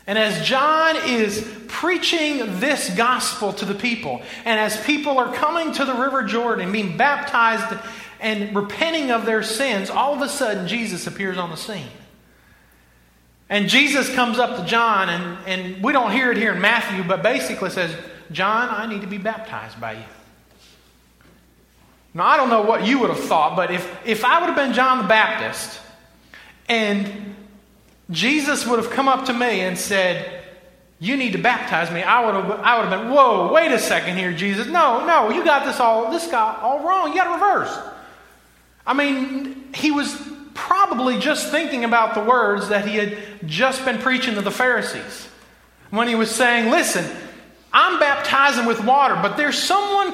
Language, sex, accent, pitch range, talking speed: English, male, American, 205-280 Hz, 185 wpm